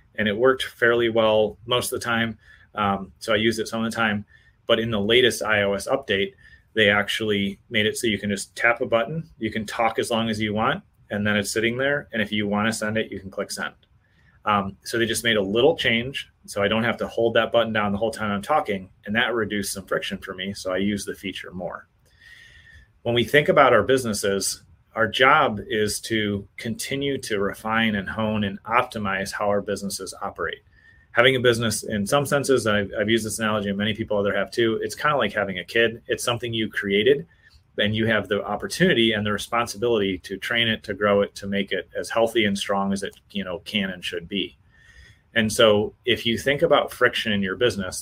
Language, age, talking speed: English, 30-49, 225 wpm